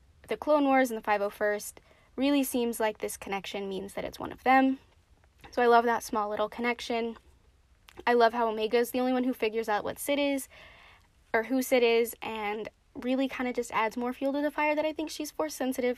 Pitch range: 210-255 Hz